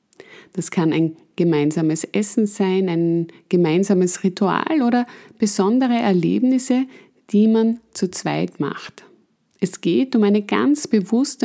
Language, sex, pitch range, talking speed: German, female, 195-245 Hz, 120 wpm